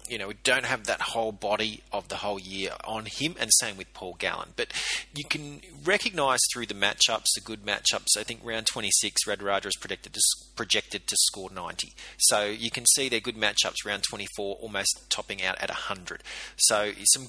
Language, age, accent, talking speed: English, 30-49, Australian, 190 wpm